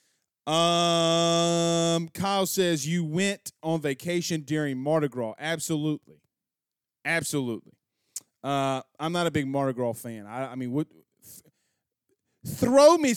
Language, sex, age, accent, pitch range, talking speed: English, male, 30-49, American, 135-185 Hz, 120 wpm